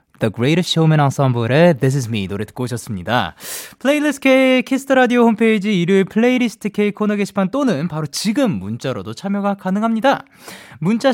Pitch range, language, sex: 140-230 Hz, Korean, male